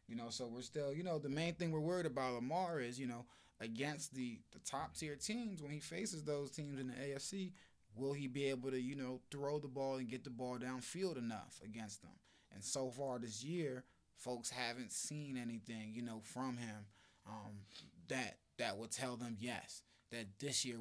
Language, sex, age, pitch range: English, male, 20-39, 110-135 Hz